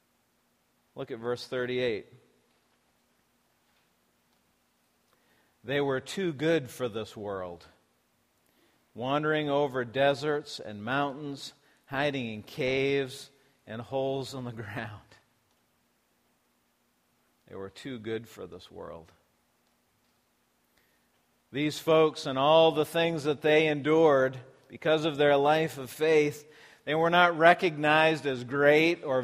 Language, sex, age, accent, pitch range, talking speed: English, male, 50-69, American, 125-160 Hz, 110 wpm